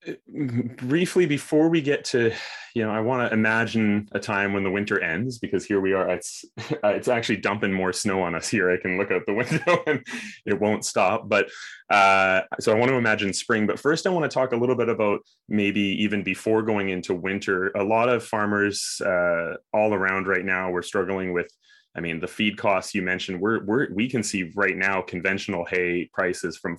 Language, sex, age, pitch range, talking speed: English, male, 20-39, 95-120 Hz, 210 wpm